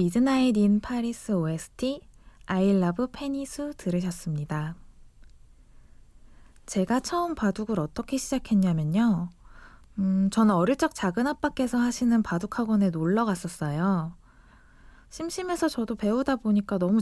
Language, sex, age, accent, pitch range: Korean, female, 20-39, native, 165-235 Hz